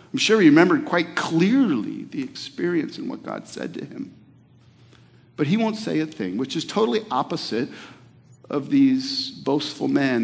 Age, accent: 50-69, American